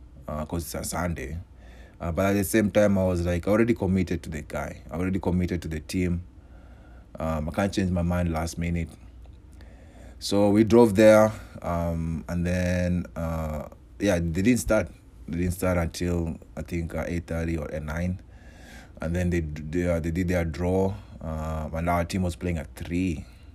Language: English